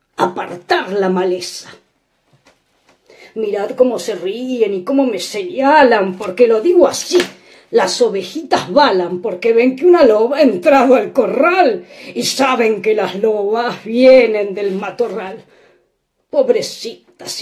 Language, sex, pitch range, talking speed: Spanish, female, 215-290 Hz, 125 wpm